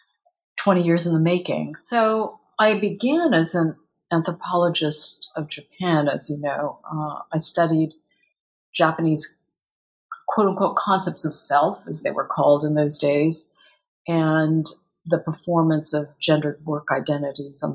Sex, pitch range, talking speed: female, 150-185 Hz, 135 wpm